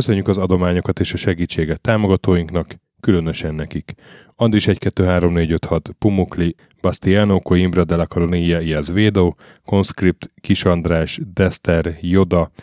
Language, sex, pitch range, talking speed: Hungarian, male, 85-100 Hz, 100 wpm